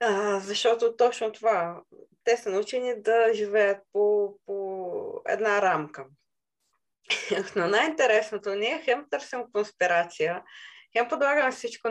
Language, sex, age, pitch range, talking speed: Bulgarian, female, 20-39, 200-270 Hz, 110 wpm